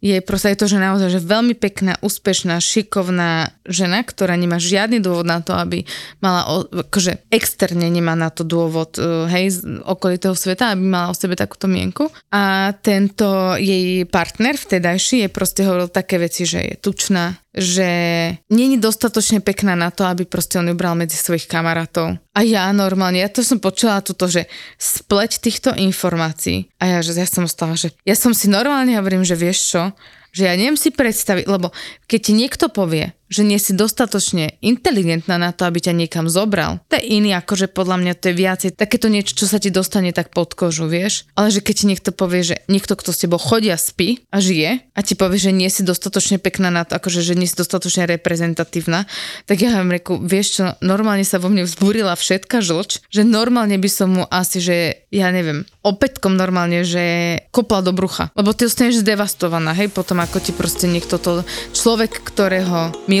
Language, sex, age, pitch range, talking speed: Slovak, female, 20-39, 175-205 Hz, 195 wpm